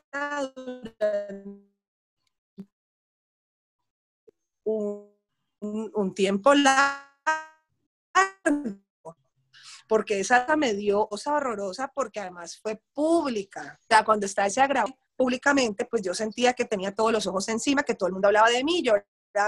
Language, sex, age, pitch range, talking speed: Spanish, female, 30-49, 205-270 Hz, 120 wpm